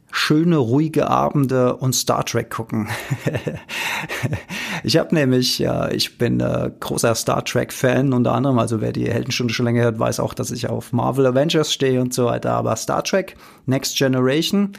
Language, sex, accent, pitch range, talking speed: German, male, German, 125-150 Hz, 165 wpm